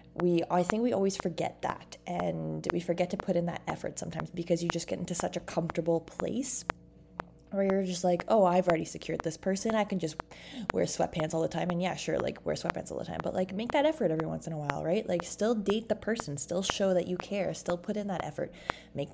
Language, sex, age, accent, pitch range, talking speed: English, female, 20-39, American, 160-190 Hz, 250 wpm